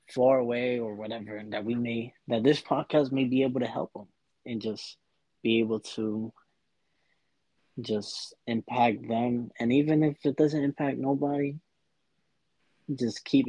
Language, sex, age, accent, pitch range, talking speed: English, male, 20-39, American, 105-120 Hz, 150 wpm